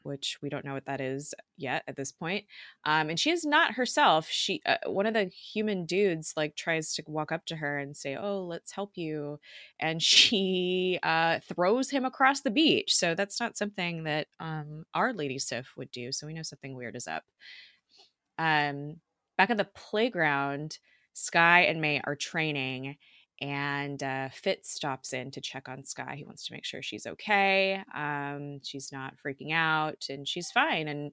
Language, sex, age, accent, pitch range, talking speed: English, female, 20-39, American, 140-195 Hz, 190 wpm